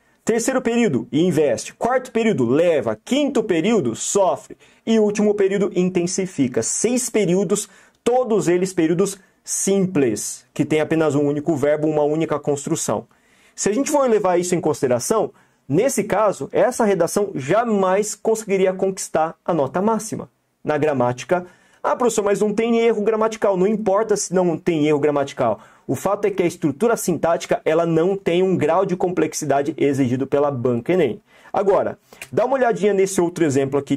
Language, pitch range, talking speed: Portuguese, 150-210 Hz, 155 wpm